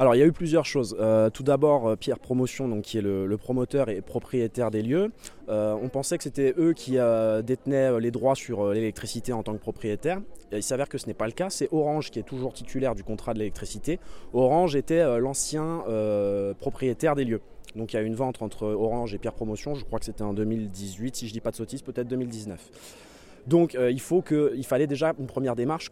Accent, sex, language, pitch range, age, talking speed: French, male, French, 110-145 Hz, 20-39, 240 wpm